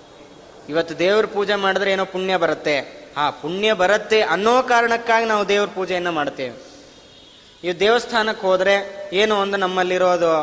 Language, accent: Kannada, native